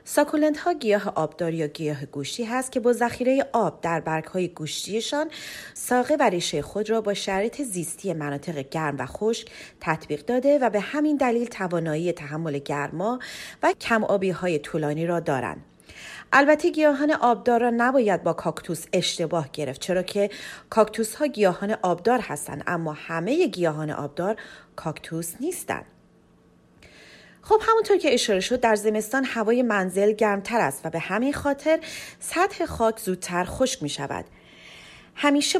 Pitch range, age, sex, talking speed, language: 170-255 Hz, 30-49, female, 150 wpm, Persian